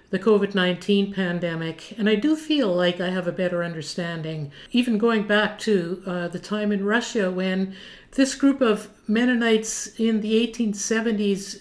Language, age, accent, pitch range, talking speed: English, 60-79, American, 180-210 Hz, 155 wpm